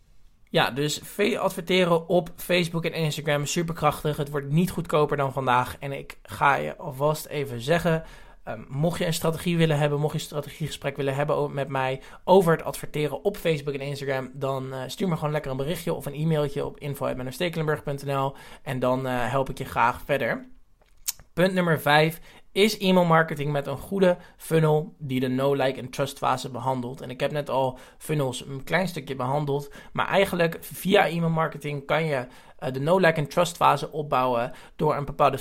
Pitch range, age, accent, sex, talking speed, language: 135-160 Hz, 20-39, Dutch, male, 185 wpm, Dutch